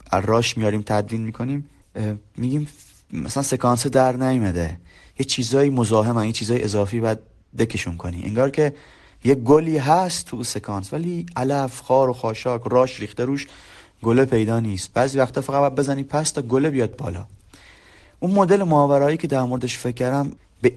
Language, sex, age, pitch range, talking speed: Persian, male, 30-49, 110-140 Hz, 155 wpm